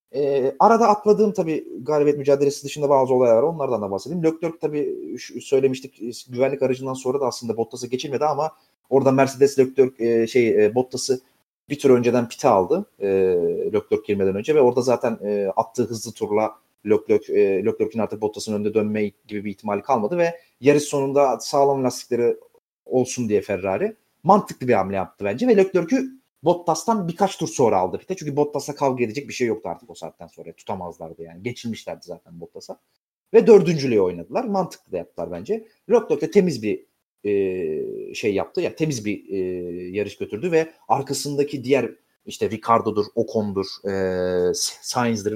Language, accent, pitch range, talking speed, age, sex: Turkish, native, 115-185 Hz, 160 wpm, 30-49, male